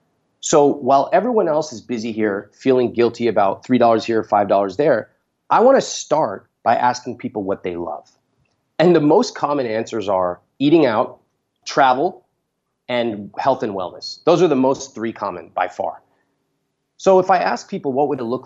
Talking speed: 170 wpm